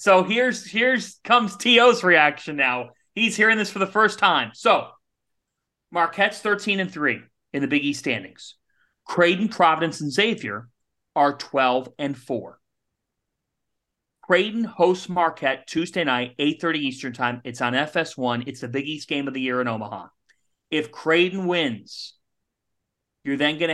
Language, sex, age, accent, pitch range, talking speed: English, male, 40-59, American, 130-175 Hz, 150 wpm